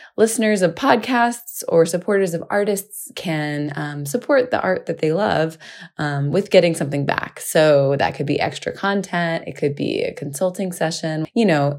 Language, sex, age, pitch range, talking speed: English, female, 20-39, 150-190 Hz, 175 wpm